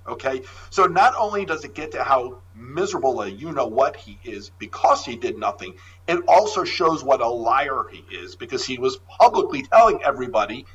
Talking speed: 185 wpm